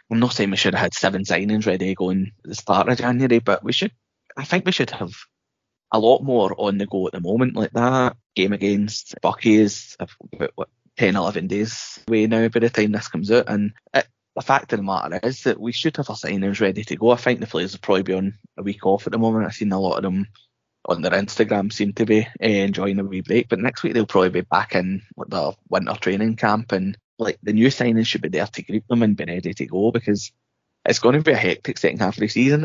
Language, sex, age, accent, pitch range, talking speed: English, male, 20-39, British, 95-115 Hz, 255 wpm